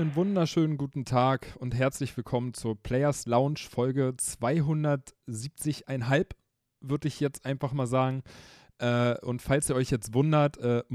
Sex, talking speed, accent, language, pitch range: male, 140 wpm, German, German, 120-150 Hz